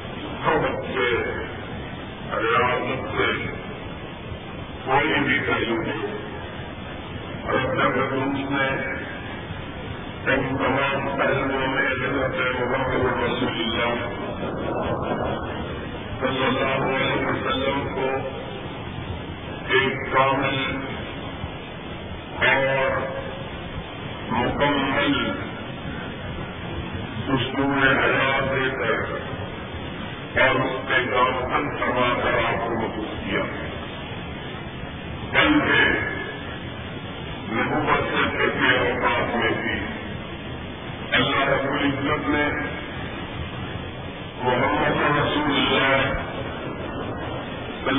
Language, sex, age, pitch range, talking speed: Urdu, female, 50-69, 120-135 Hz, 60 wpm